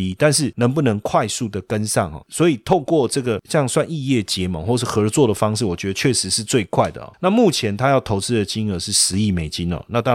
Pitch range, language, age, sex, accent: 100-135 Hz, Chinese, 30-49, male, native